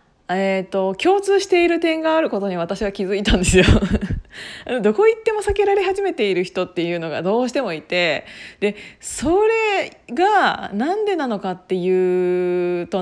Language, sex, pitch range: Japanese, female, 190-310 Hz